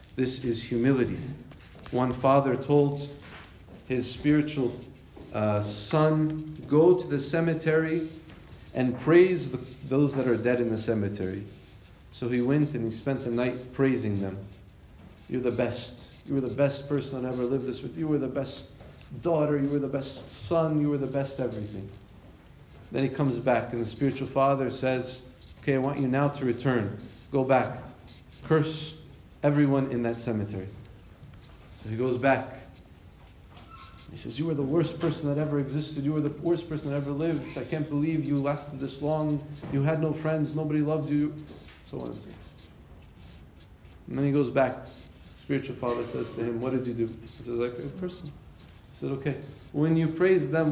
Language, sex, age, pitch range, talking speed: English, male, 40-59, 115-145 Hz, 180 wpm